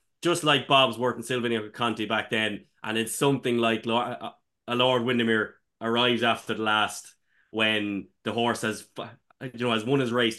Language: English